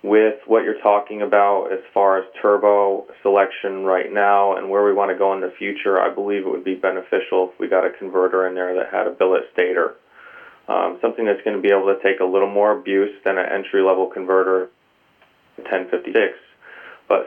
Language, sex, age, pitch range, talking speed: English, male, 30-49, 95-100 Hz, 200 wpm